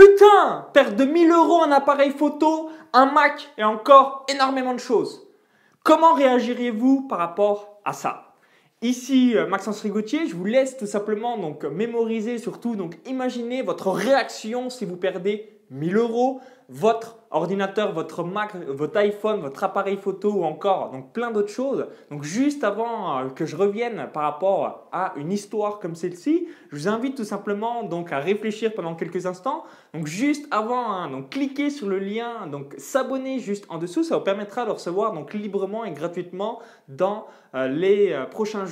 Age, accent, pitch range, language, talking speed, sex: 20-39, French, 160-245 Hz, French, 165 wpm, male